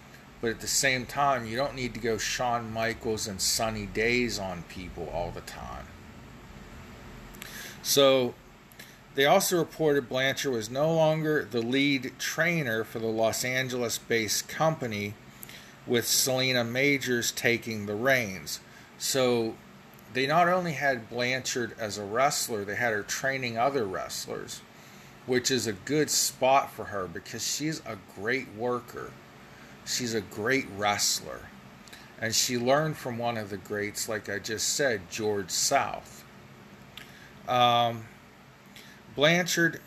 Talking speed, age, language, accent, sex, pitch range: 135 wpm, 40-59, English, American, male, 110-135 Hz